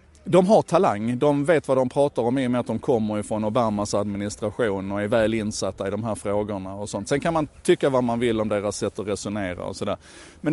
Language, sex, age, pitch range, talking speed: Swedish, male, 30-49, 105-130 Hz, 245 wpm